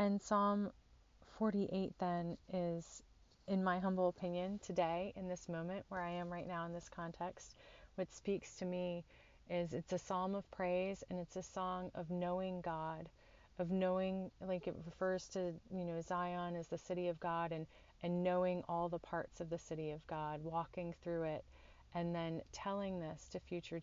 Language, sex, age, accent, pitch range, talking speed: English, female, 30-49, American, 155-180 Hz, 180 wpm